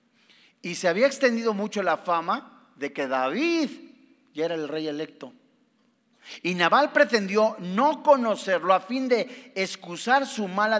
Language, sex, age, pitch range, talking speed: Spanish, male, 40-59, 190-255 Hz, 145 wpm